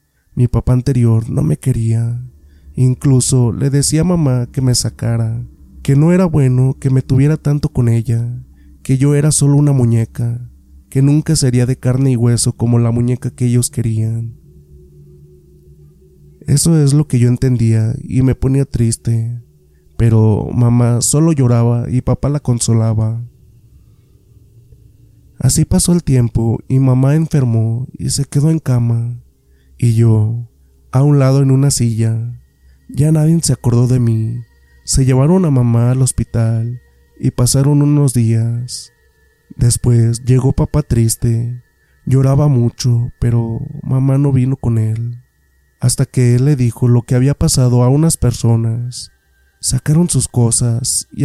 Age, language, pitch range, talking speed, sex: 30-49, Spanish, 115-135 Hz, 145 wpm, male